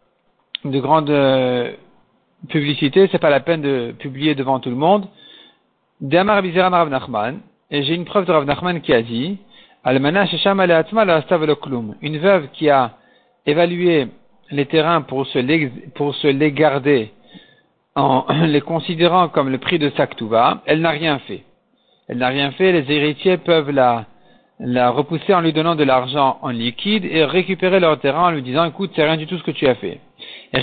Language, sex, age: French, male, 50-69